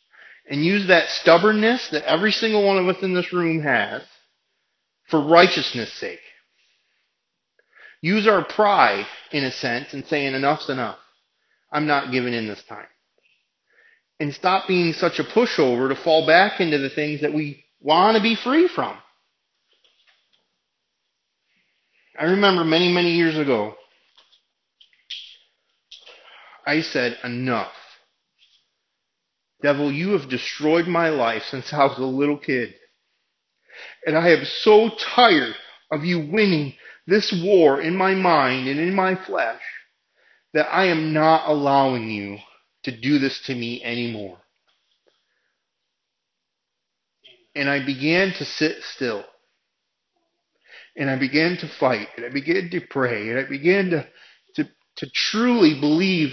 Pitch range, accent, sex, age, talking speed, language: 140-185 Hz, American, male, 30-49, 135 wpm, English